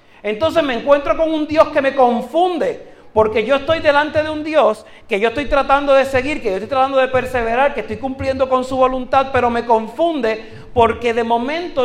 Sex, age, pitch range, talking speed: male, 40-59, 200-275 Hz, 205 wpm